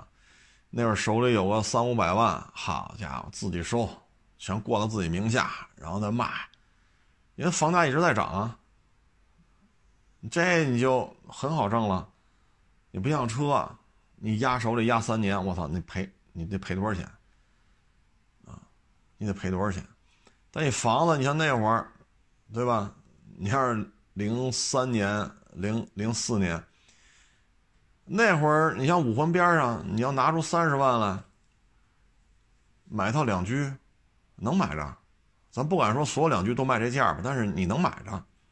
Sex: male